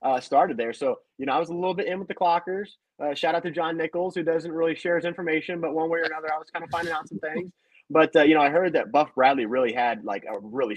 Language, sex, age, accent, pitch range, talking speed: English, male, 30-49, American, 120-160 Hz, 300 wpm